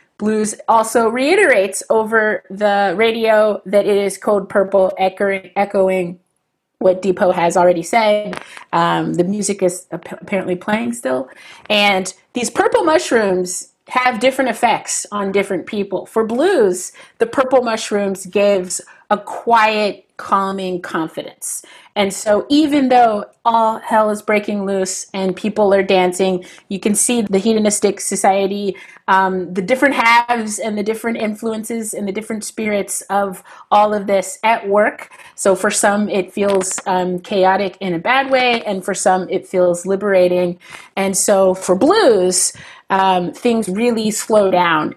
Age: 30-49